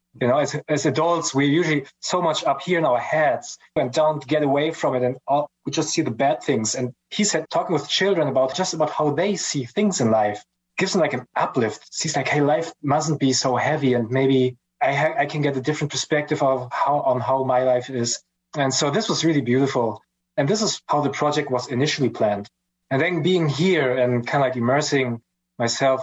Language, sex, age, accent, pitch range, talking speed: English, male, 20-39, German, 120-150 Hz, 225 wpm